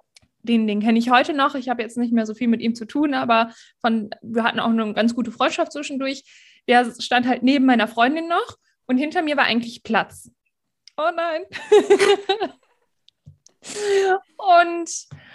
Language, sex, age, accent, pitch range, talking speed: German, female, 20-39, German, 240-310 Hz, 170 wpm